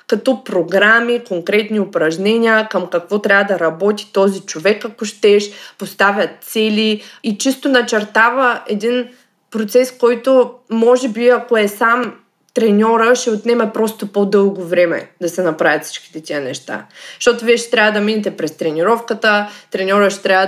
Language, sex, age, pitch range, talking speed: Bulgarian, female, 20-39, 180-230 Hz, 145 wpm